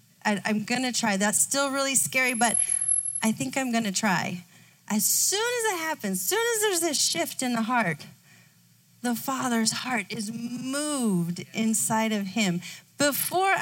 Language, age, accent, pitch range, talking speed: English, 30-49, American, 220-310 Hz, 170 wpm